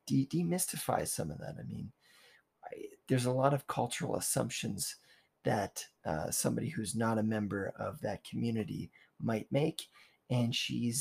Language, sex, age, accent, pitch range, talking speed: English, male, 20-39, American, 110-130 Hz, 140 wpm